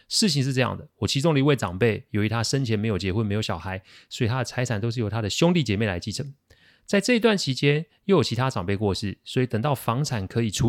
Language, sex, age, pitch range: Chinese, male, 30-49, 100-140 Hz